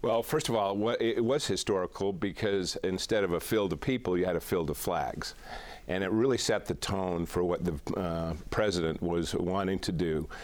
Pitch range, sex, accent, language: 85-110 Hz, male, American, English